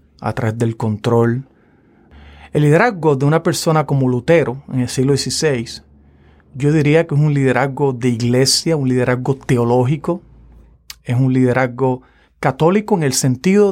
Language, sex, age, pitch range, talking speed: Spanish, male, 40-59, 125-155 Hz, 145 wpm